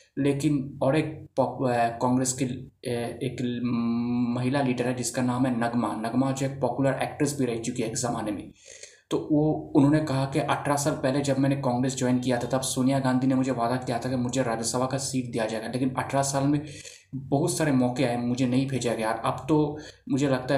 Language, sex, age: Hindi, male, 20-39